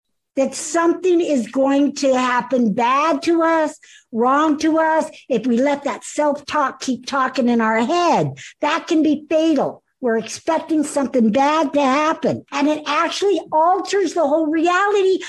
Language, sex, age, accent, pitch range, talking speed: English, female, 60-79, American, 230-325 Hz, 155 wpm